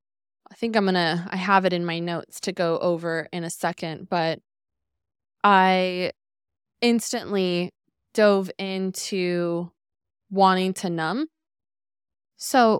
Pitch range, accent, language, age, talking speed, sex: 175-215 Hz, American, English, 20-39, 115 wpm, female